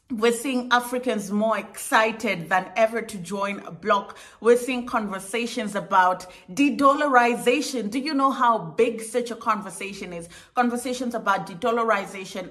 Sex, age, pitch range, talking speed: female, 30-49, 190-240 Hz, 145 wpm